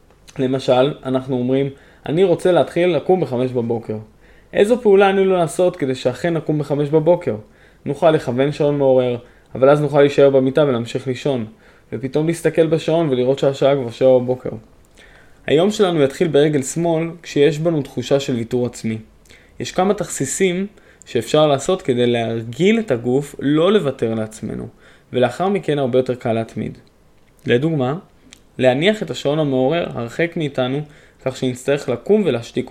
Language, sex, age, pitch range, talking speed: Hebrew, male, 20-39, 125-165 Hz, 145 wpm